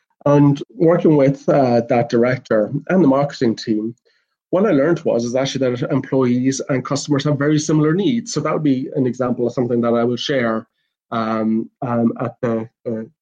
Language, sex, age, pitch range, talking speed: English, male, 30-49, 115-140 Hz, 185 wpm